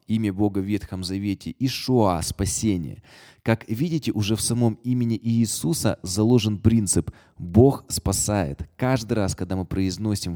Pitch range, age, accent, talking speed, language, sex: 95-115 Hz, 20-39, native, 140 wpm, Russian, male